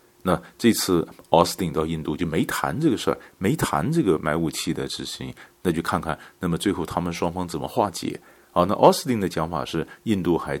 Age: 50-69